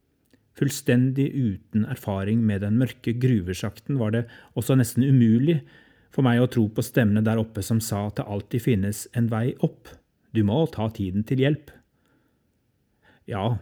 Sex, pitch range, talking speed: male, 105-125 Hz, 160 wpm